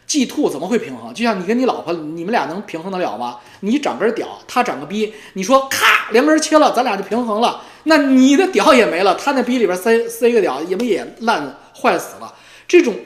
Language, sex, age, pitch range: Chinese, male, 20-39, 195-260 Hz